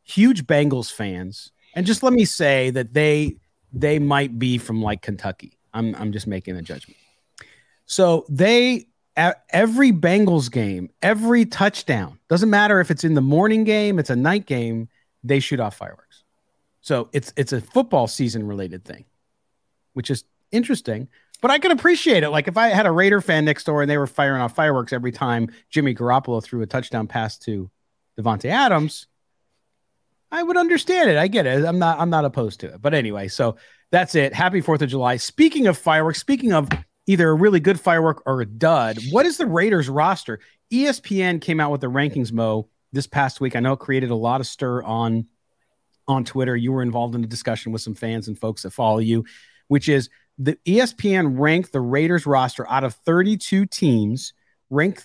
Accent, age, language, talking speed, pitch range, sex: American, 40-59, English, 190 wpm, 120-185 Hz, male